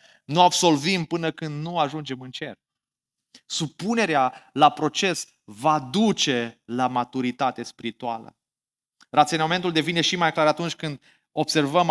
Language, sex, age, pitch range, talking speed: Romanian, male, 20-39, 130-160 Hz, 120 wpm